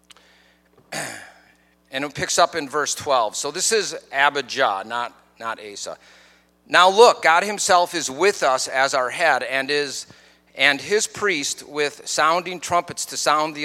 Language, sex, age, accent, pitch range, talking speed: English, male, 40-59, American, 125-180 Hz, 155 wpm